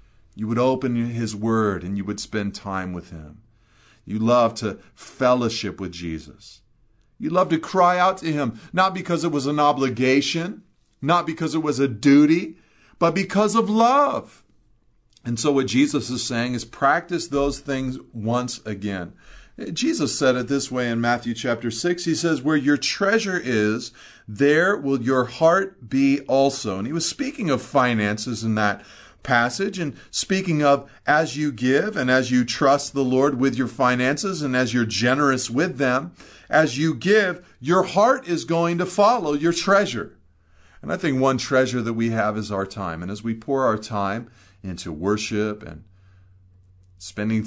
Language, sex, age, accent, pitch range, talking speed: English, male, 40-59, American, 100-145 Hz, 170 wpm